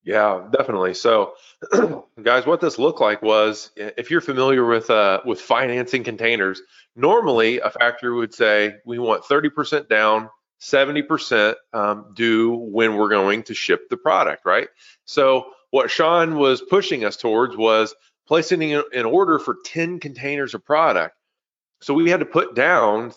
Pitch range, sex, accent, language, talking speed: 115-150 Hz, male, American, English, 155 wpm